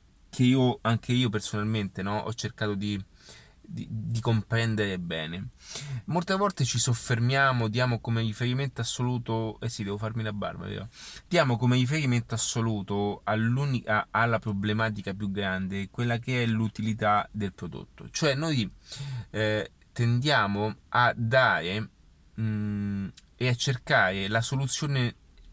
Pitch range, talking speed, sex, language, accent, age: 105-125 Hz, 130 wpm, male, Italian, native, 30-49